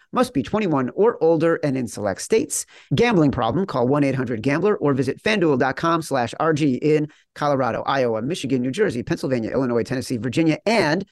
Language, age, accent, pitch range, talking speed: English, 40-59, American, 140-180 Hz, 155 wpm